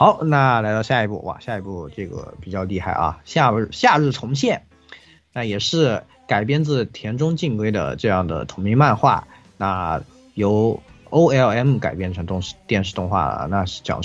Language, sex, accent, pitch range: Chinese, male, native, 95-125 Hz